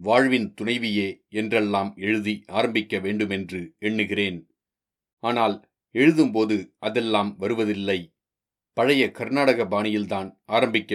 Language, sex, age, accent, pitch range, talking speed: Tamil, male, 40-59, native, 105-120 Hz, 80 wpm